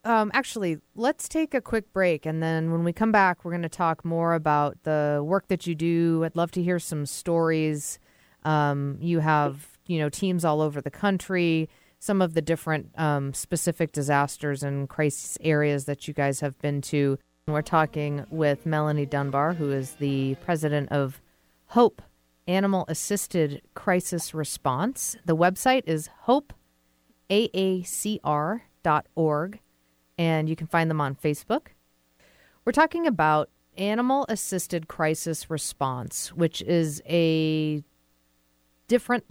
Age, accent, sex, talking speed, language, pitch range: 40-59, American, female, 140 wpm, English, 145-175 Hz